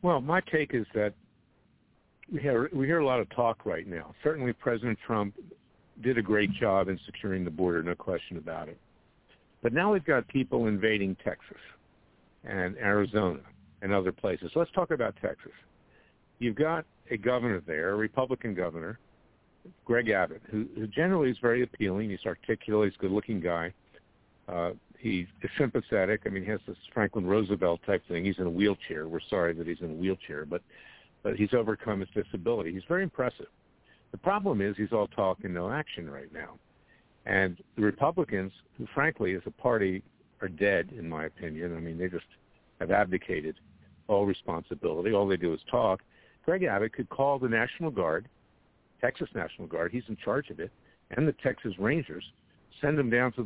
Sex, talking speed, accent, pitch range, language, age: male, 185 wpm, American, 95-120 Hz, English, 60-79